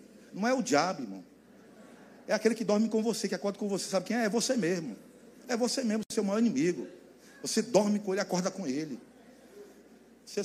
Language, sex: Portuguese, male